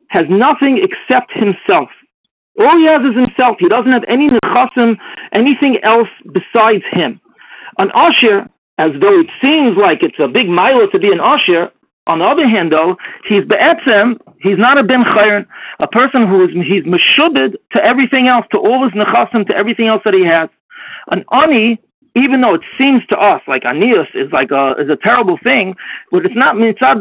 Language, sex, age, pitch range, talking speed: English, male, 50-69, 210-300 Hz, 185 wpm